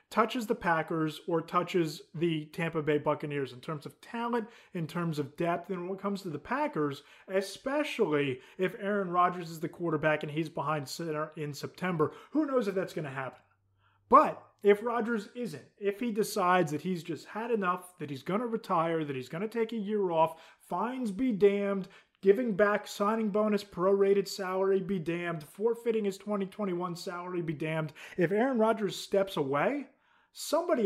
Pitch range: 160-210 Hz